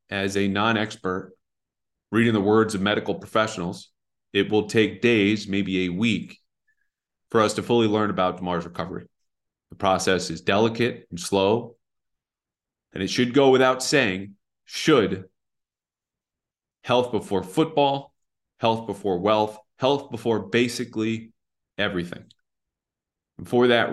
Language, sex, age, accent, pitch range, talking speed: English, male, 30-49, American, 100-115 Hz, 125 wpm